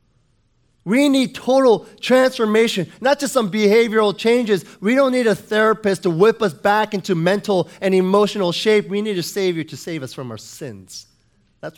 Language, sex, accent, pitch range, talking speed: English, male, American, 130-210 Hz, 175 wpm